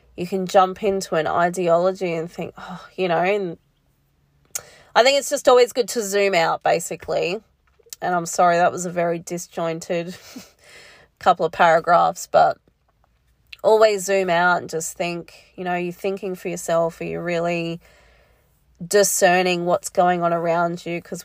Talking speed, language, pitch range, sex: 160 wpm, English, 170-195 Hz, female